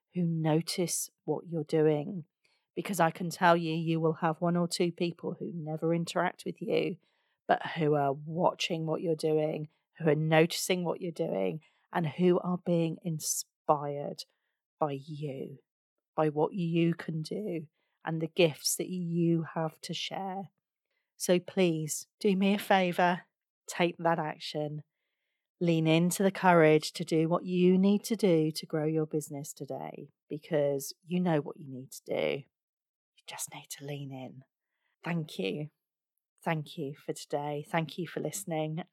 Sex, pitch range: female, 155-185 Hz